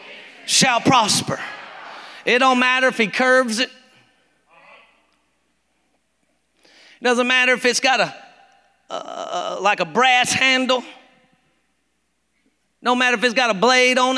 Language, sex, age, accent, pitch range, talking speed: English, male, 40-59, American, 225-265 Hz, 125 wpm